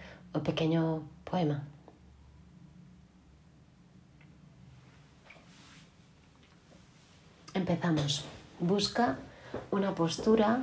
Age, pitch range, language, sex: 30-49, 140-165 Hz, Spanish, female